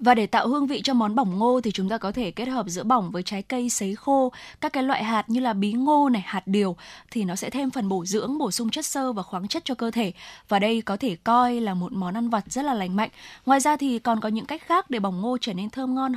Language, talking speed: Vietnamese, 295 wpm